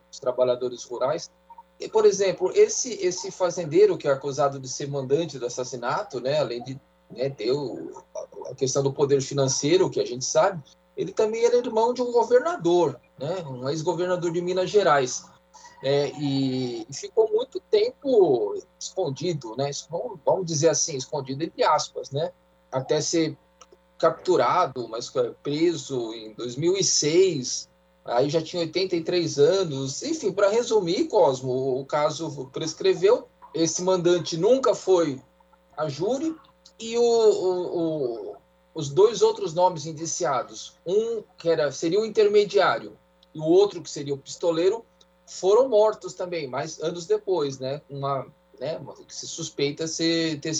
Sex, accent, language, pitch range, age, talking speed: male, Brazilian, Portuguese, 140-230 Hz, 20-39, 145 wpm